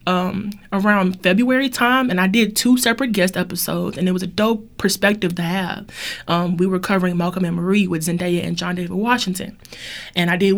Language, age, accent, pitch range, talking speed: English, 20-39, American, 180-225 Hz, 200 wpm